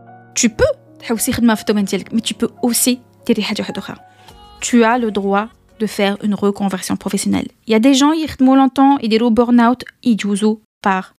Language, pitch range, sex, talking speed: Arabic, 210-265 Hz, female, 205 wpm